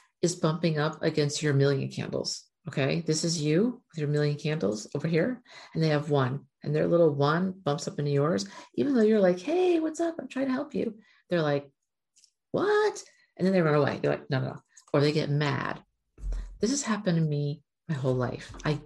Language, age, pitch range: English, 50-69, 145-195 Hz